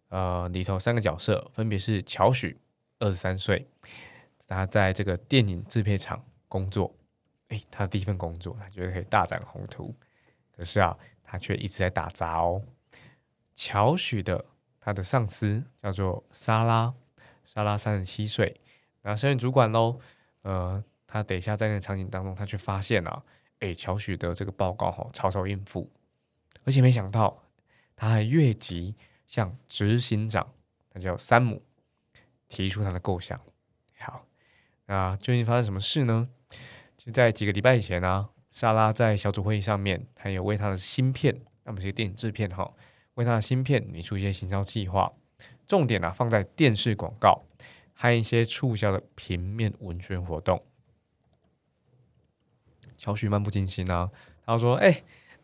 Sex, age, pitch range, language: male, 20-39, 95-120 Hz, Chinese